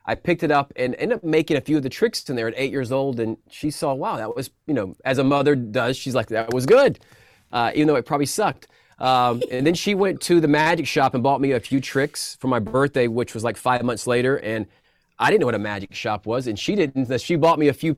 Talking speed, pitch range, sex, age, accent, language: 275 wpm, 115-155 Hz, male, 30-49, American, English